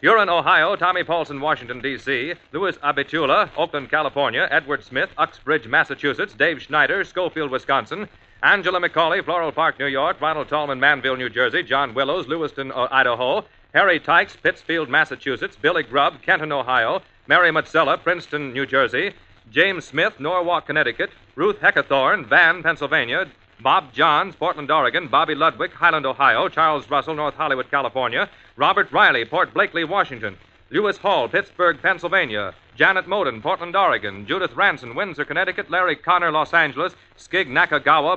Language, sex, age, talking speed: English, male, 40-59, 145 wpm